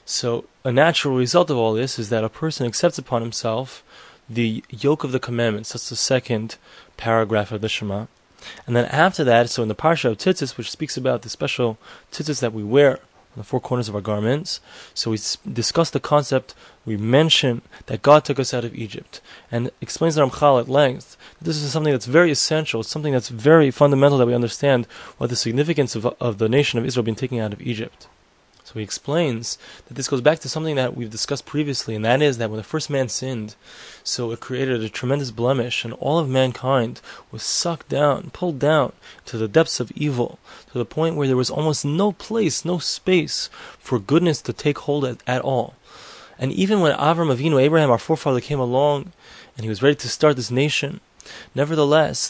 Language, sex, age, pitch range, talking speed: English, male, 20-39, 120-150 Hz, 205 wpm